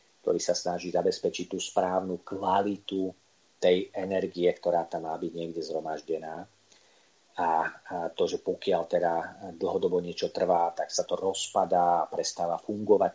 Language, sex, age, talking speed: Slovak, male, 40-59, 135 wpm